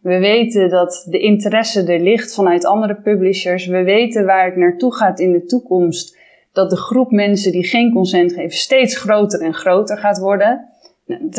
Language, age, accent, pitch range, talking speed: Dutch, 20-39, Dutch, 180-220 Hz, 180 wpm